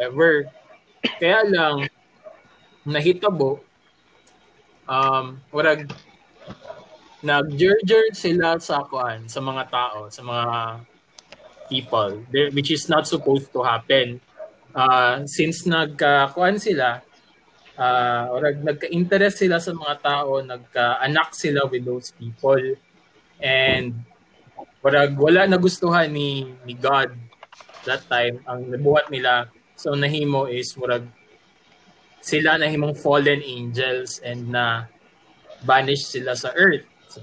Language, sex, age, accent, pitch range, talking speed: English, male, 20-39, Filipino, 125-160 Hz, 105 wpm